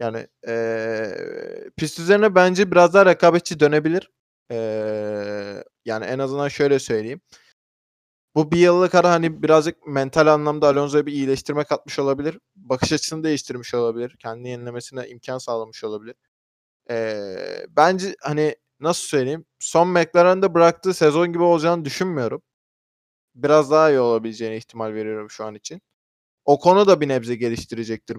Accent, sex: native, male